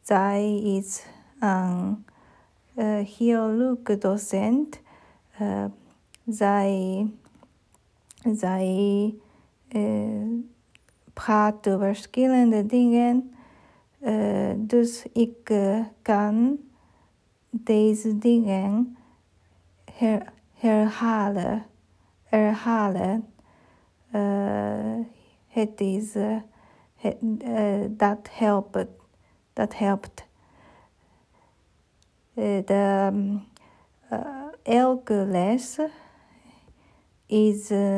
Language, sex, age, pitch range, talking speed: Dutch, female, 50-69, 200-230 Hz, 60 wpm